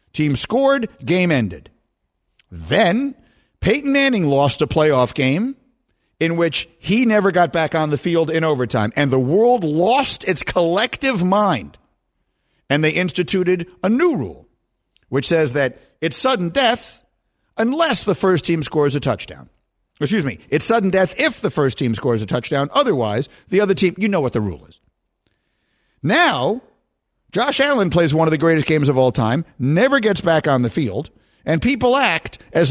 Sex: male